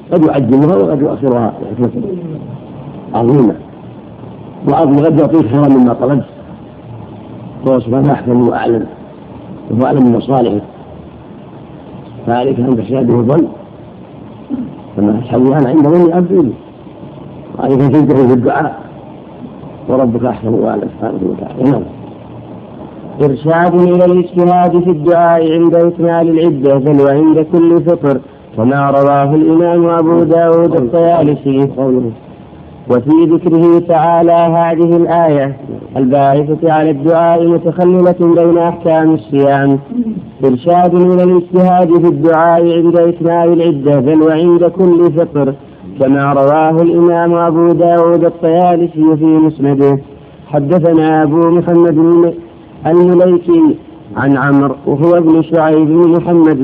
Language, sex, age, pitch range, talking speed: Arabic, male, 50-69, 140-170 Hz, 105 wpm